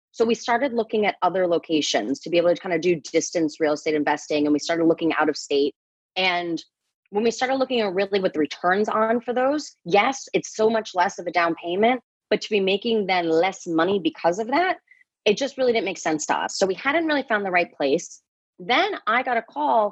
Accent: American